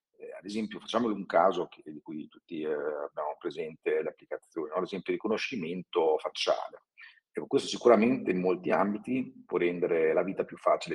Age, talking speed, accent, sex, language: 40-59, 175 wpm, native, male, Italian